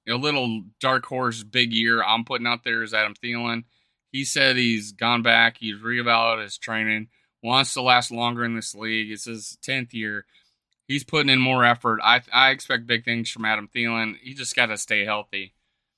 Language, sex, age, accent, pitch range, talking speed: English, male, 30-49, American, 115-130 Hz, 195 wpm